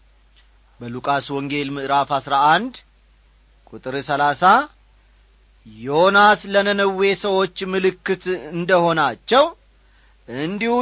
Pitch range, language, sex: 140-230 Hz, Amharic, male